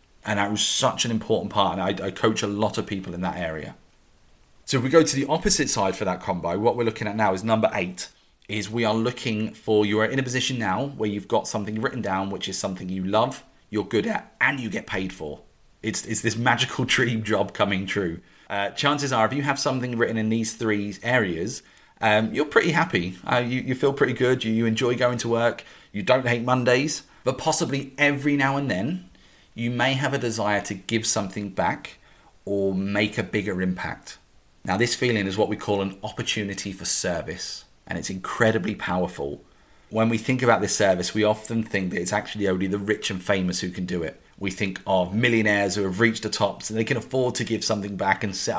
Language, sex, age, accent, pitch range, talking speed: English, male, 30-49, British, 100-120 Hz, 225 wpm